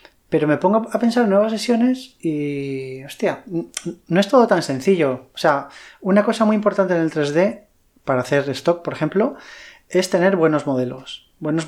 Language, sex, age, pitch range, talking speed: Spanish, male, 20-39, 140-190 Hz, 175 wpm